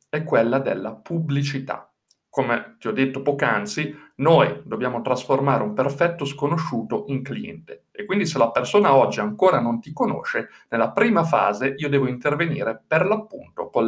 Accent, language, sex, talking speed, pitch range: native, Italian, male, 155 wpm, 130-175 Hz